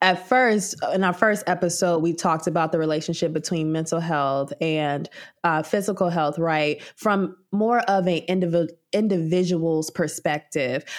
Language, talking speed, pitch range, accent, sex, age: English, 140 wpm, 165-195 Hz, American, female, 20-39